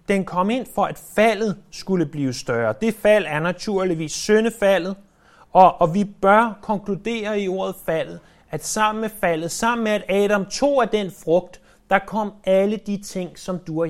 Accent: native